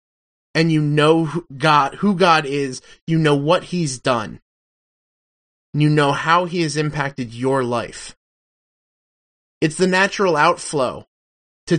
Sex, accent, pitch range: male, American, 135-175 Hz